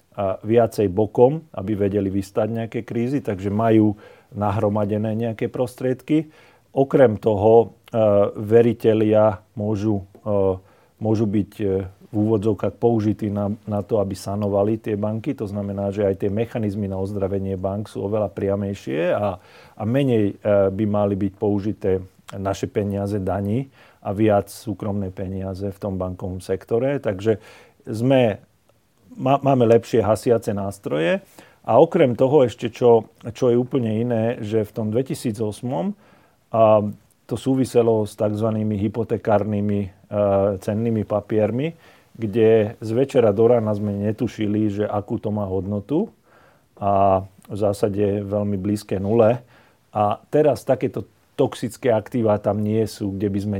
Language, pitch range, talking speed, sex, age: Slovak, 100-115 Hz, 135 wpm, male, 40-59